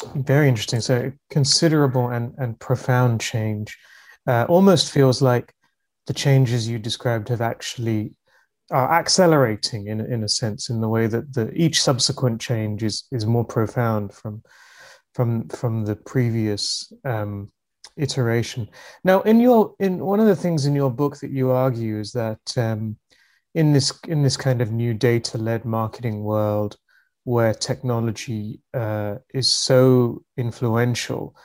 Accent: British